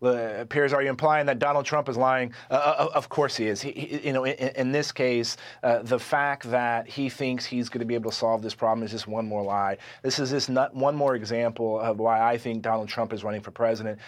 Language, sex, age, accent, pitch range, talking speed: English, male, 30-49, American, 115-140 Hz, 245 wpm